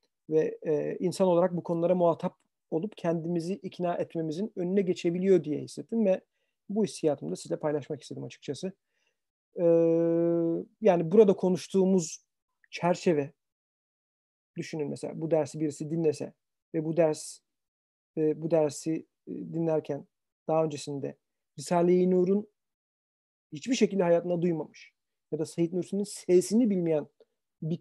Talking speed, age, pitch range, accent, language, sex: 115 wpm, 40-59, 150-180 Hz, native, Turkish, male